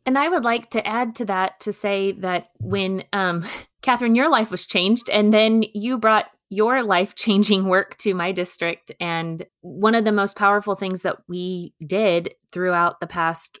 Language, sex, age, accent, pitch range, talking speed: English, female, 20-39, American, 170-200 Hz, 180 wpm